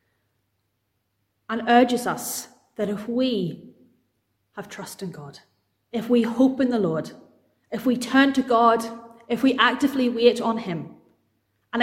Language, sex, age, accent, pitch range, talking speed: English, female, 30-49, British, 165-245 Hz, 140 wpm